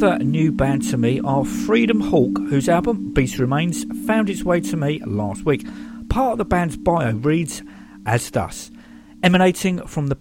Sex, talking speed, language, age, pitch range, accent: male, 170 wpm, English, 50-69, 125-165 Hz, British